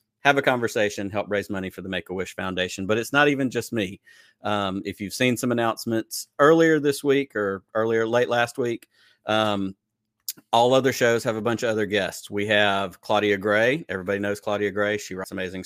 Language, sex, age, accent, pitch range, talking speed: English, male, 40-59, American, 100-120 Hz, 195 wpm